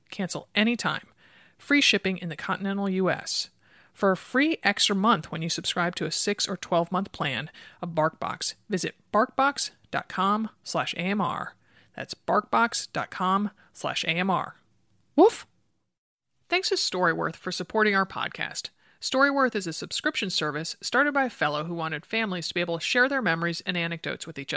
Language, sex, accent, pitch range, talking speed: English, male, American, 165-235 Hz, 160 wpm